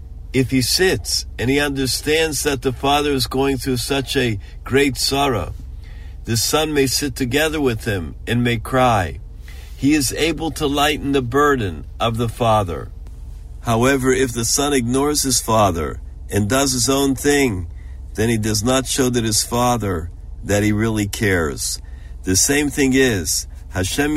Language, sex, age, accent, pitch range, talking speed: English, male, 50-69, American, 90-130 Hz, 160 wpm